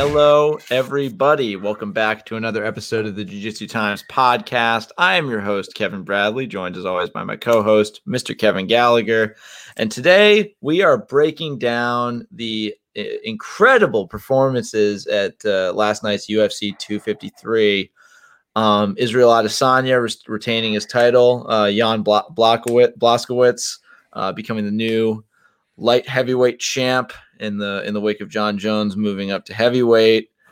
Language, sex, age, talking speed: English, male, 20-39, 140 wpm